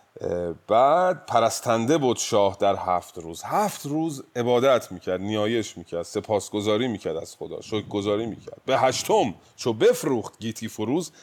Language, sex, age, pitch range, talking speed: Persian, male, 30-49, 95-130 Hz, 140 wpm